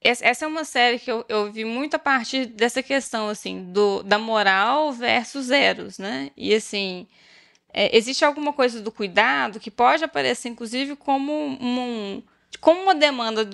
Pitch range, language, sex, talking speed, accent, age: 210-280 Hz, Portuguese, female, 165 wpm, Brazilian, 10-29